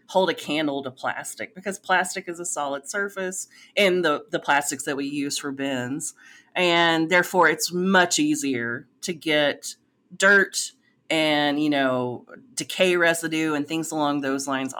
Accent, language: American, English